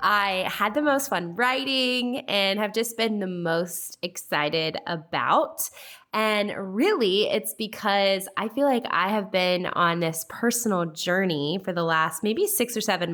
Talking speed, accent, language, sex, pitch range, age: 160 wpm, American, English, female, 165-210 Hz, 20-39